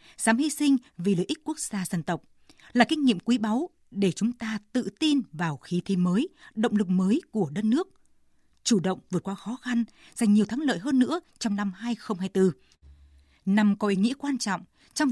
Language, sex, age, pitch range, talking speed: Vietnamese, female, 20-39, 185-245 Hz, 205 wpm